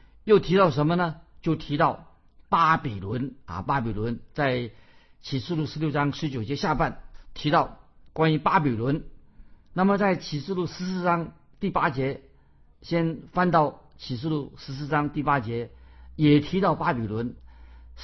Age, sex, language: 50-69, male, Chinese